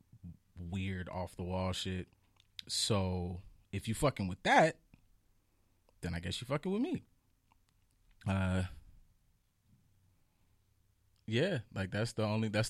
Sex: male